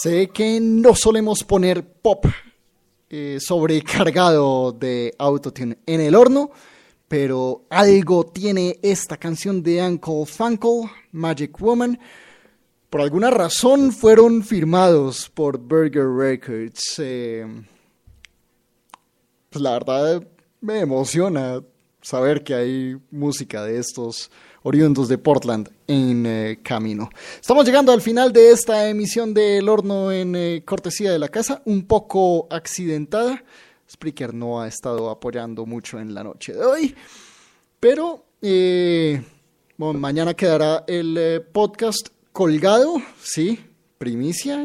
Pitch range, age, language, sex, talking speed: 130-210 Hz, 30-49, English, male, 120 wpm